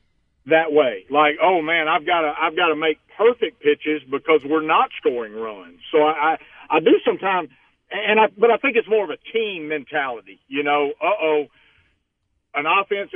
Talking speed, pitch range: 185 wpm, 140-175 Hz